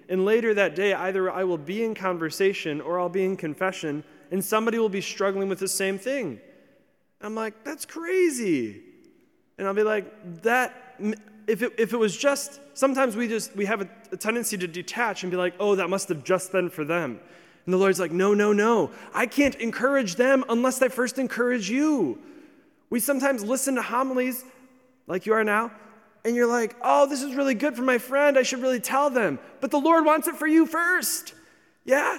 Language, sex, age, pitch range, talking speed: English, male, 20-39, 180-265 Hz, 205 wpm